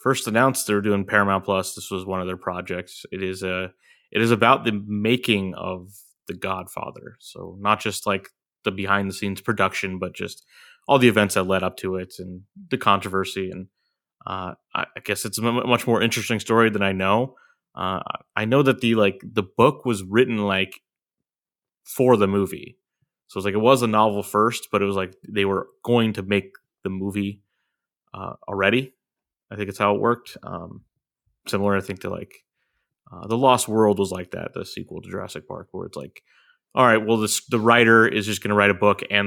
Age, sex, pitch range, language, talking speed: 20-39, male, 95-115 Hz, English, 205 wpm